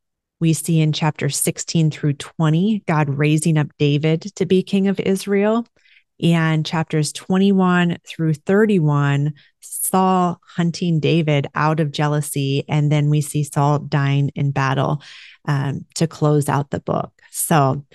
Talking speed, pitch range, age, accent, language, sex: 140 wpm, 150-175 Hz, 30-49, American, English, female